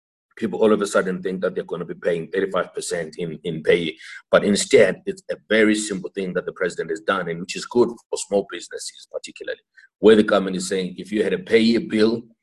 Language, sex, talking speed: English, male, 220 wpm